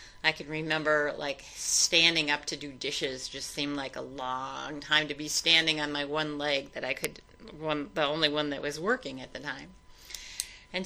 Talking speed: 195 wpm